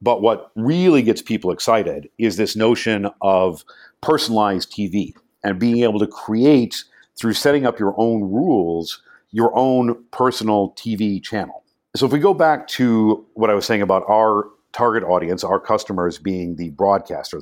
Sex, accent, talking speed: male, American, 160 wpm